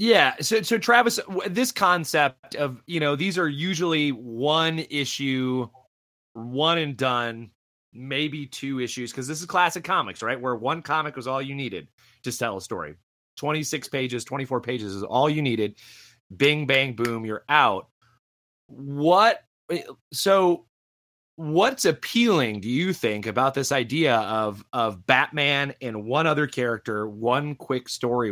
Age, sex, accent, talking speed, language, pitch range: 30-49, male, American, 150 wpm, English, 120-160 Hz